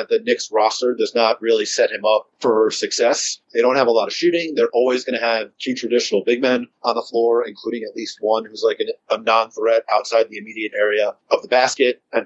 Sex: male